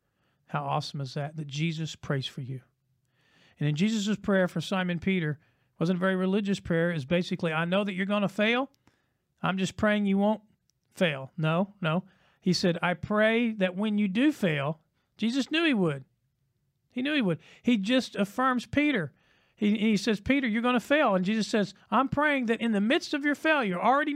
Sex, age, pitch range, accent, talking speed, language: male, 40-59, 175-270 Hz, American, 200 wpm, English